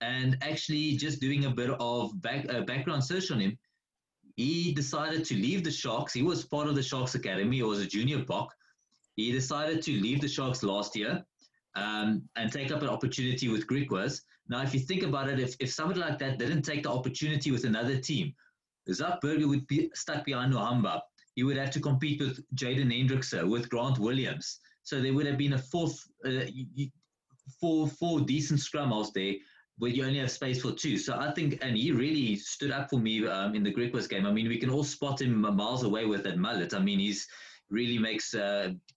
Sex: male